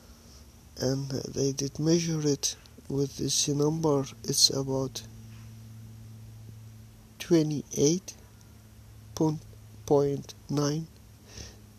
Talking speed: 55 wpm